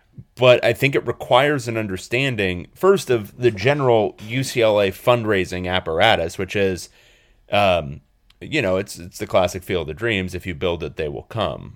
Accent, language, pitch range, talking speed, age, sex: American, English, 90-120 Hz, 170 wpm, 30-49, male